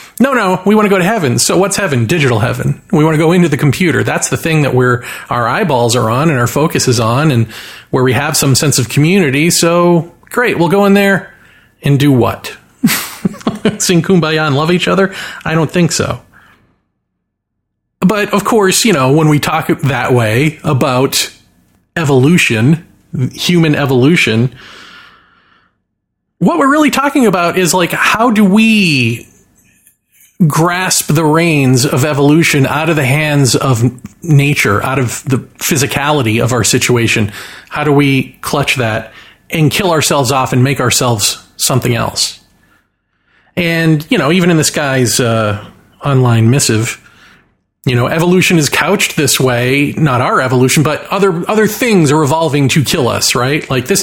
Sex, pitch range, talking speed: male, 130-175 Hz, 165 wpm